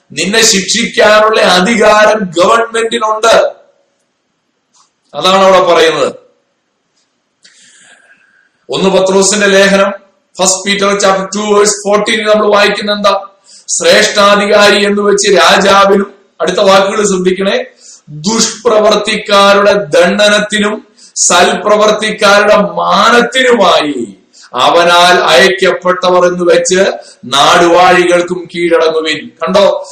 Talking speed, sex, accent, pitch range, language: 70 wpm, male, native, 180-220 Hz, Malayalam